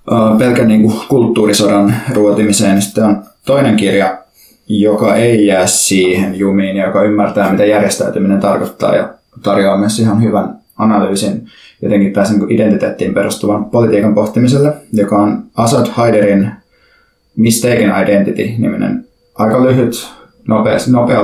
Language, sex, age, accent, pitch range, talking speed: Finnish, male, 20-39, native, 100-110 Hz, 110 wpm